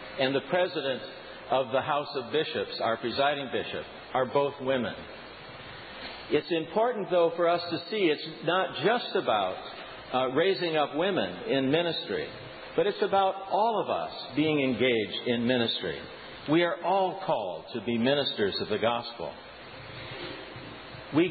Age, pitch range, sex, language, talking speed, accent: 50-69, 140-195 Hz, male, English, 145 wpm, American